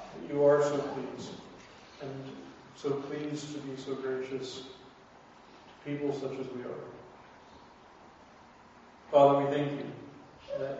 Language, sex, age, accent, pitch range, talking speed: English, male, 40-59, American, 135-145 Hz, 120 wpm